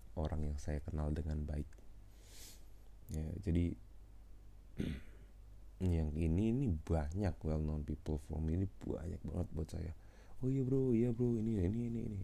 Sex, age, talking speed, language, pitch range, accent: male, 20-39, 145 wpm, Indonesian, 80-95 Hz, native